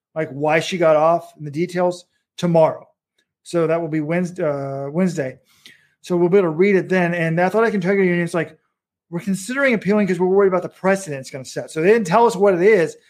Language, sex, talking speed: English, male, 245 wpm